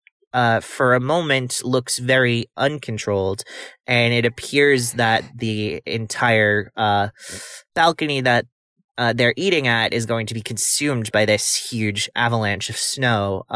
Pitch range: 110-130 Hz